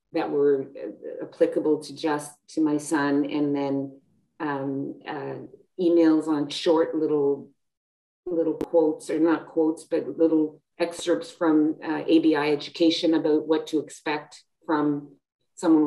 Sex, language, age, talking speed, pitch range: female, English, 40-59, 130 wpm, 145-165 Hz